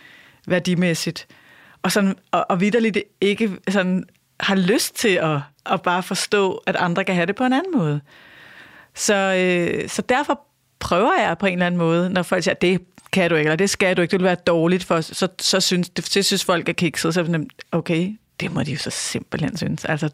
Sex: female